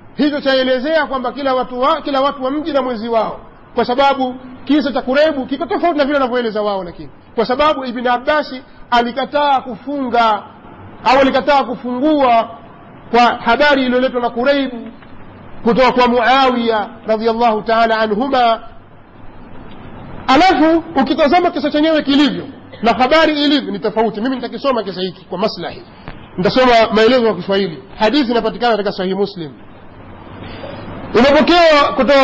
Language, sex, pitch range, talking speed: Swahili, male, 225-280 Hz, 130 wpm